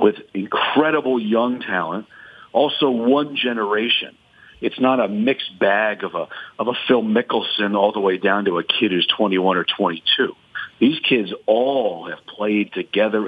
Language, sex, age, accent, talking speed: English, male, 50-69, American, 160 wpm